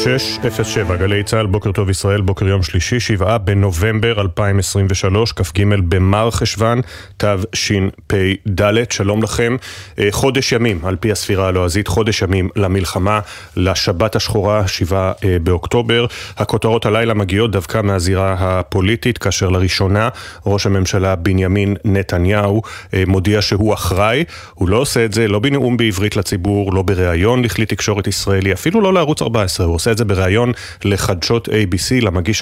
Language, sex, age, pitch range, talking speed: Hebrew, male, 30-49, 95-110 Hz, 120 wpm